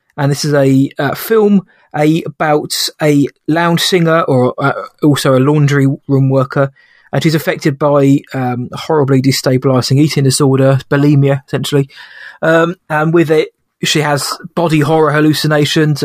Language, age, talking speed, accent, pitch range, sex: English, 20-39, 140 wpm, British, 135-160 Hz, male